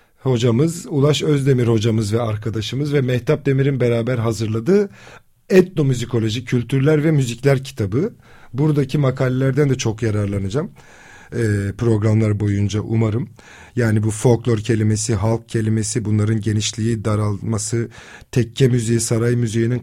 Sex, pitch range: male, 115-135 Hz